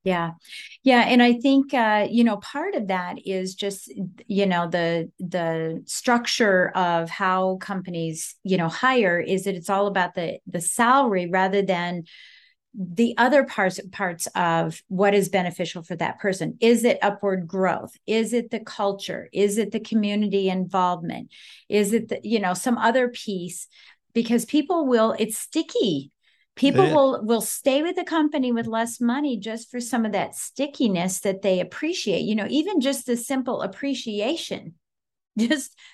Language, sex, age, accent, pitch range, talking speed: English, female, 40-59, American, 190-245 Hz, 165 wpm